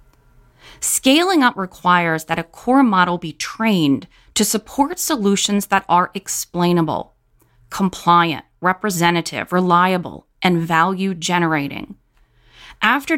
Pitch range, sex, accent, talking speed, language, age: 170-225 Hz, female, American, 95 wpm, English, 30-49